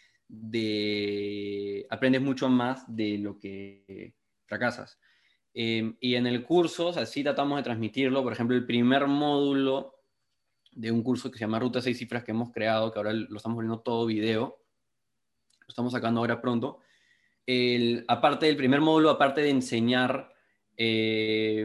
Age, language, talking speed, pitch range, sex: 20-39, Spanish, 160 wpm, 110-125 Hz, male